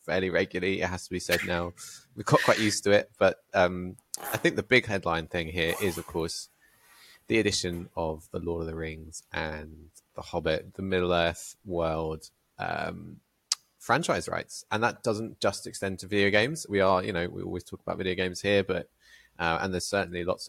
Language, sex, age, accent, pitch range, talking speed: English, male, 20-39, British, 85-100 Hz, 205 wpm